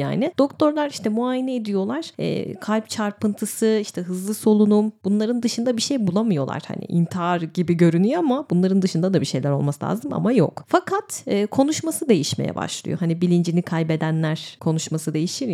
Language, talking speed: Turkish, 145 wpm